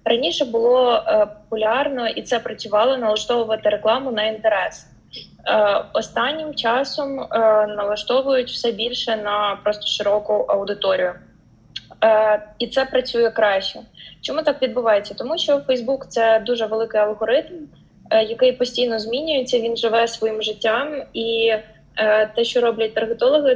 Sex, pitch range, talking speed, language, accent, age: female, 210-245 Hz, 115 wpm, Ukrainian, native, 20-39